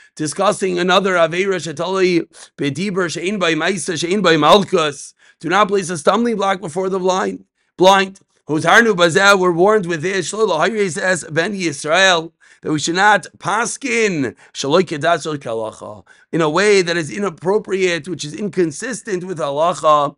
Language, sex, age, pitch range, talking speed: English, male, 40-59, 170-205 Hz, 125 wpm